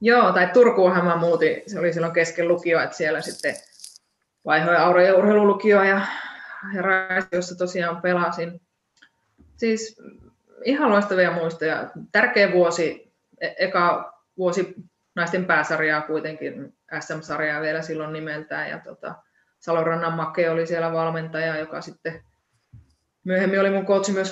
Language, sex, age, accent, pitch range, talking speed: Finnish, female, 20-39, native, 160-185 Hz, 125 wpm